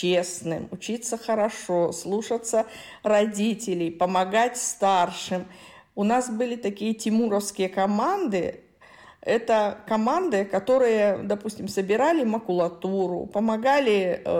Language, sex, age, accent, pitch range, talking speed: Russian, female, 40-59, native, 190-235 Hz, 85 wpm